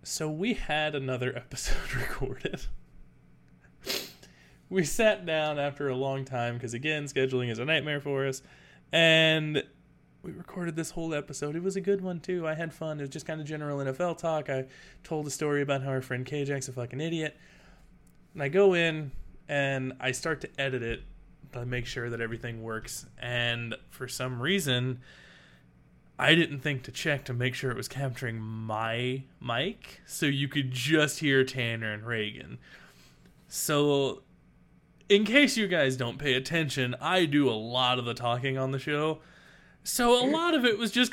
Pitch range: 125-160 Hz